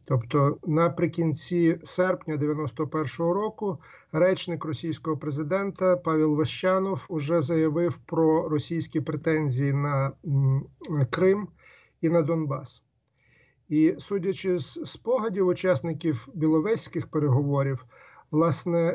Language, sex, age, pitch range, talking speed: Ukrainian, male, 50-69, 140-170 Hz, 90 wpm